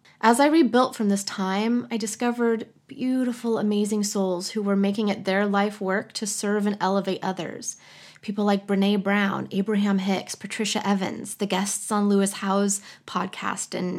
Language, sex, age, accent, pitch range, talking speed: English, female, 20-39, American, 195-225 Hz, 165 wpm